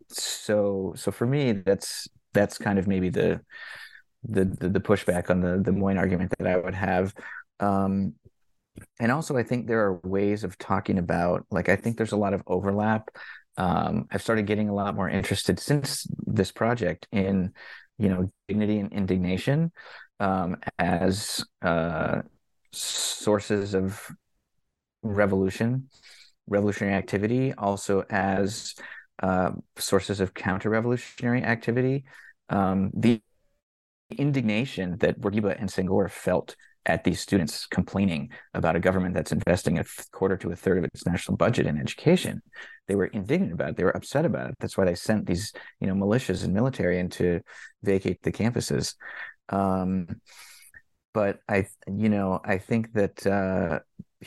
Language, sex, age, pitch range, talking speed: English, male, 30-49, 95-110 Hz, 150 wpm